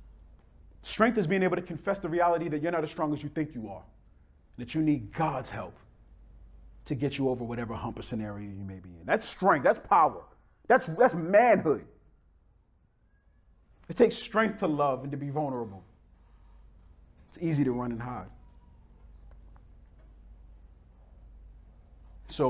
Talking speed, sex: 155 wpm, male